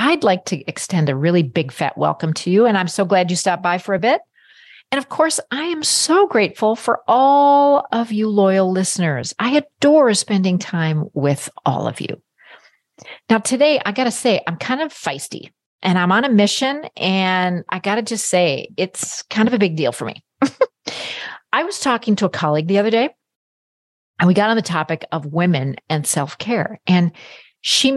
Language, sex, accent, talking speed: English, female, American, 200 wpm